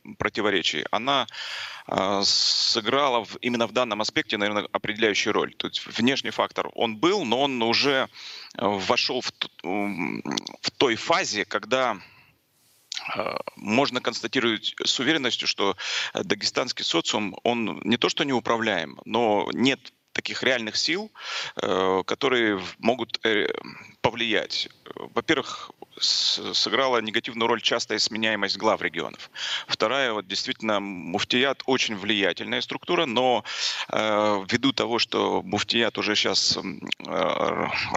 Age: 30-49